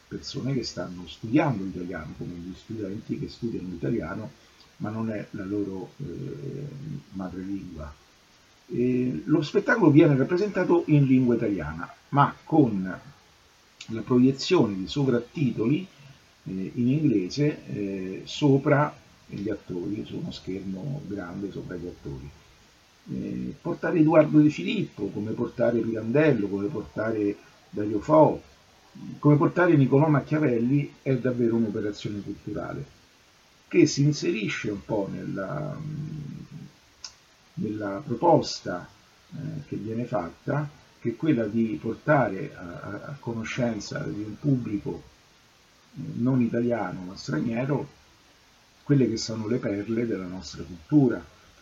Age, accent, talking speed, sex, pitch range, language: 50-69, native, 120 wpm, male, 100-145 Hz, Italian